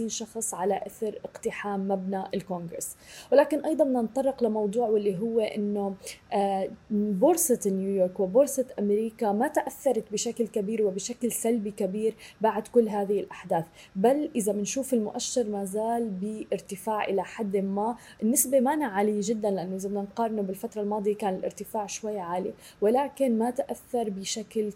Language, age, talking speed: Arabic, 20-39, 135 wpm